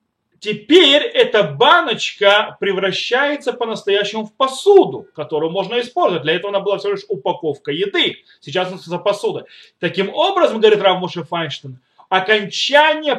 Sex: male